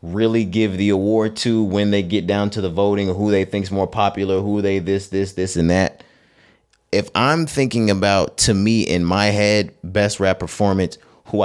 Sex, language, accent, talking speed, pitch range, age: male, English, American, 200 wpm, 95-110 Hz, 30-49